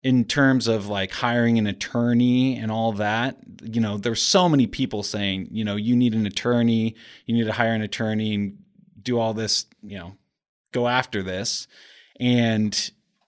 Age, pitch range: 30-49, 100-125 Hz